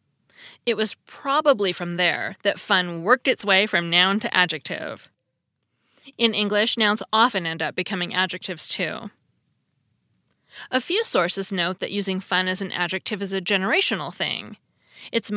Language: English